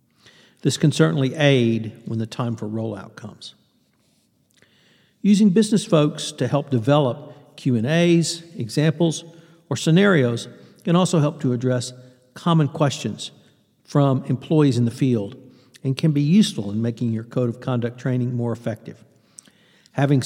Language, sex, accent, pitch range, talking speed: English, male, American, 125-155 Hz, 135 wpm